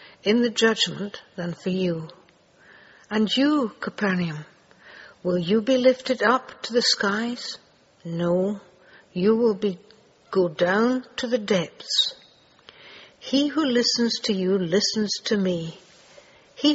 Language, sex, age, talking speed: English, female, 60-79, 125 wpm